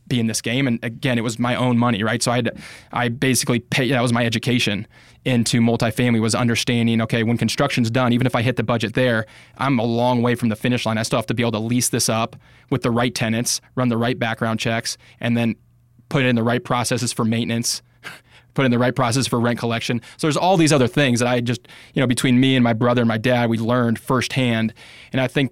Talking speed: 255 wpm